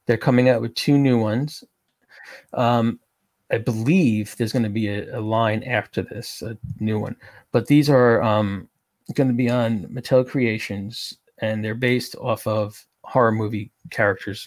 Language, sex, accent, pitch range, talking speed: English, male, American, 105-125 Hz, 160 wpm